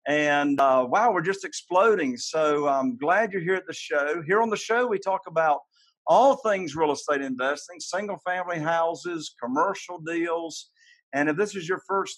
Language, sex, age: English, male, 50-69